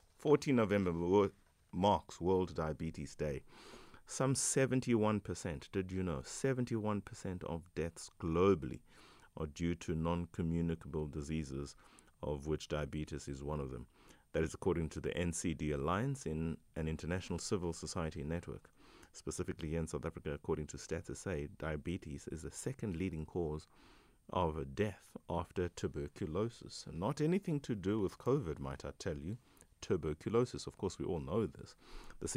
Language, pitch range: English, 75-95 Hz